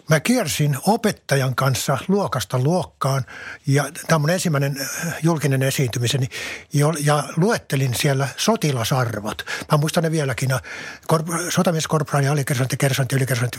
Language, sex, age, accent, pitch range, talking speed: Finnish, male, 60-79, native, 135-155 Hz, 120 wpm